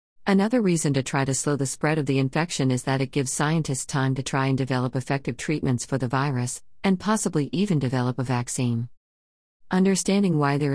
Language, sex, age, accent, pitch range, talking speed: English, female, 50-69, American, 130-155 Hz, 195 wpm